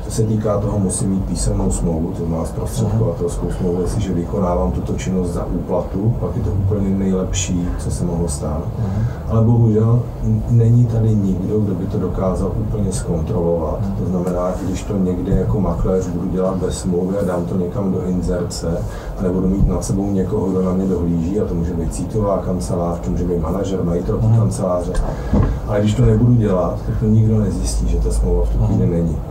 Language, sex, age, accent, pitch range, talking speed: Czech, male, 40-59, native, 85-105 Hz, 180 wpm